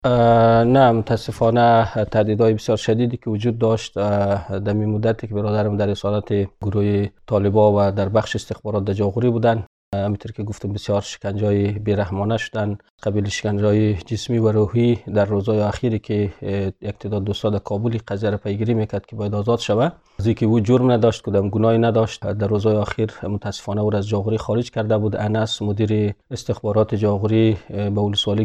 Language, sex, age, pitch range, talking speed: Persian, male, 40-59, 105-115 Hz, 150 wpm